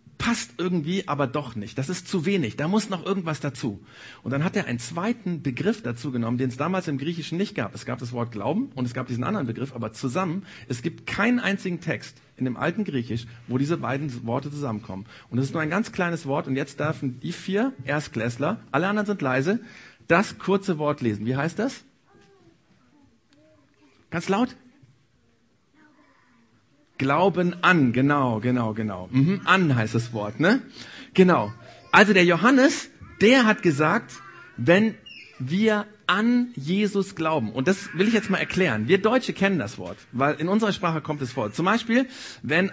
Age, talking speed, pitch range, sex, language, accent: 50-69, 180 wpm, 130-195 Hz, male, German, German